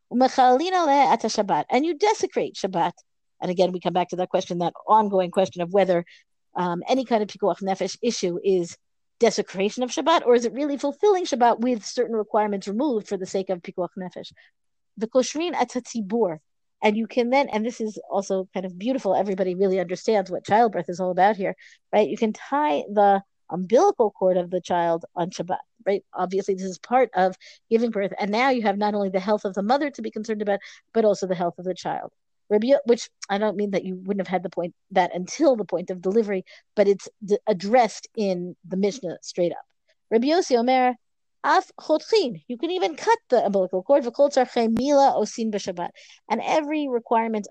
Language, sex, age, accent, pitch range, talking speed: English, female, 50-69, American, 185-245 Hz, 185 wpm